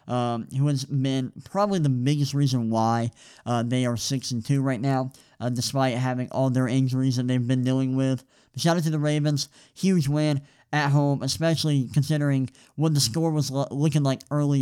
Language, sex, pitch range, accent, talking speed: English, male, 130-150 Hz, American, 180 wpm